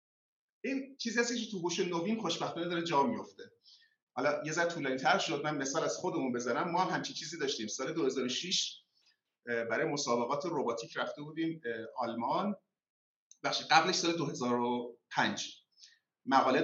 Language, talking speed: Persian, 135 wpm